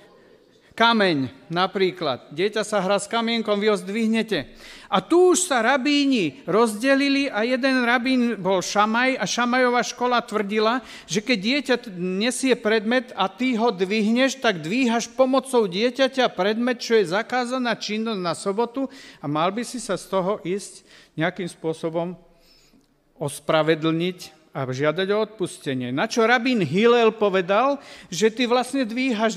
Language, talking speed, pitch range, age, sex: Slovak, 140 wpm, 185-245 Hz, 50-69, male